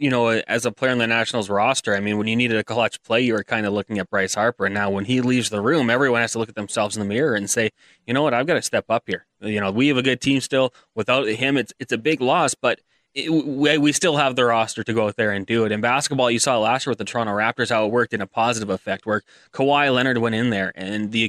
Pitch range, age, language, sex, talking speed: 105-125 Hz, 20-39, English, male, 300 wpm